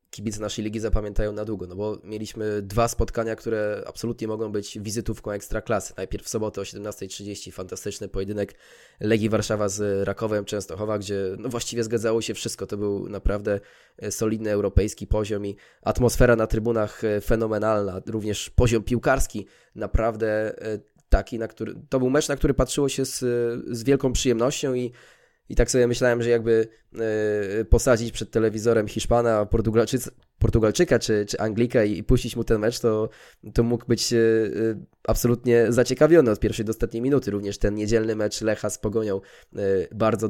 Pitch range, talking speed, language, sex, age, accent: 105-120 Hz, 160 wpm, Polish, male, 20-39, native